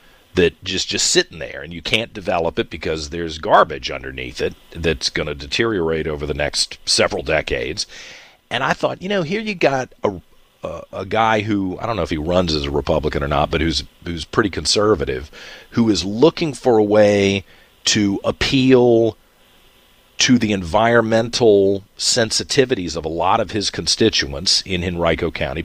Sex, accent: male, American